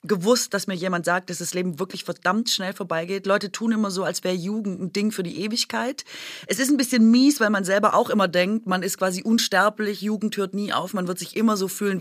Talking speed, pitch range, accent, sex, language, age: 245 wpm, 175-210 Hz, German, female, German, 30-49